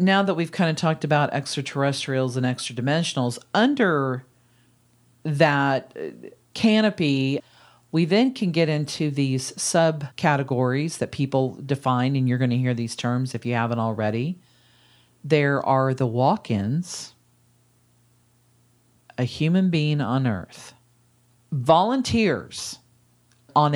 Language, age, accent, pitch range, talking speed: English, 40-59, American, 120-155 Hz, 115 wpm